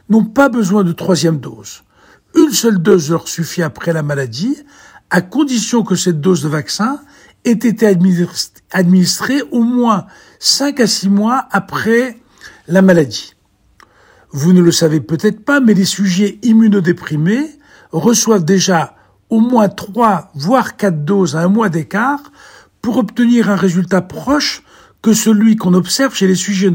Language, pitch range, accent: Italian, 180-245 Hz, French